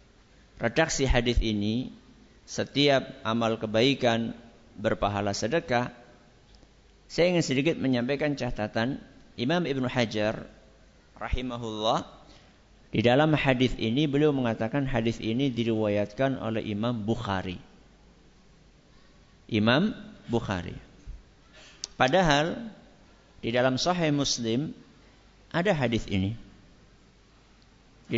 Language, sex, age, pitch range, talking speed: Malay, male, 50-69, 110-155 Hz, 85 wpm